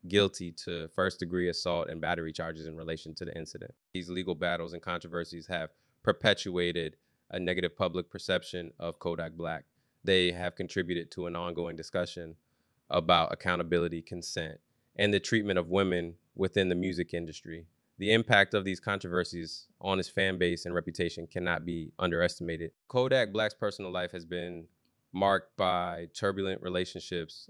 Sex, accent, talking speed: male, American, 155 wpm